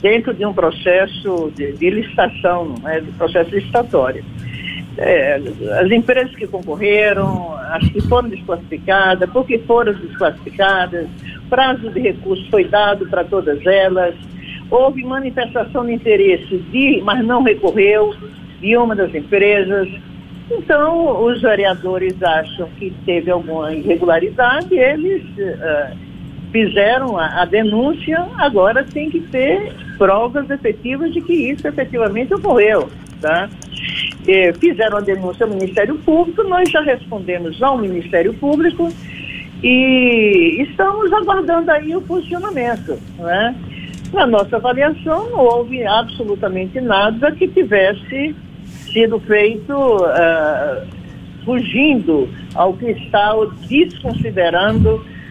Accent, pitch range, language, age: Brazilian, 190-275 Hz, Portuguese, 50-69